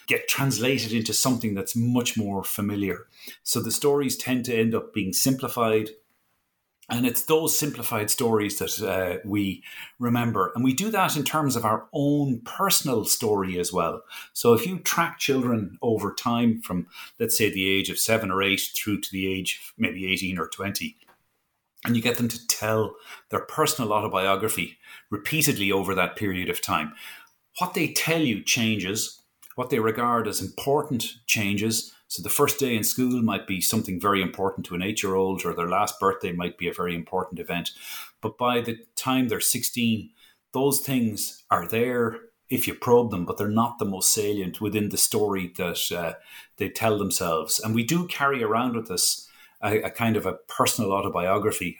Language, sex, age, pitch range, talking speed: English, male, 30-49, 100-125 Hz, 180 wpm